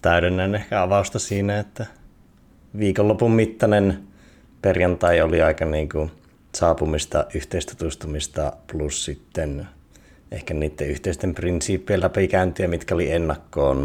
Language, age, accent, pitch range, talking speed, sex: Finnish, 30-49, native, 70-85 Hz, 105 wpm, male